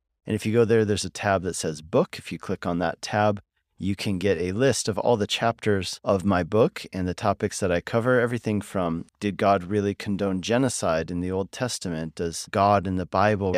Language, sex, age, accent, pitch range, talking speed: English, male, 30-49, American, 90-110 Hz, 225 wpm